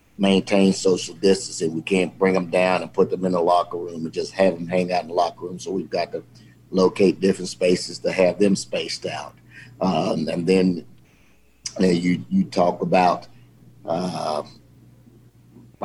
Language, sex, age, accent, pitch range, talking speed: English, male, 50-69, American, 90-105 Hz, 180 wpm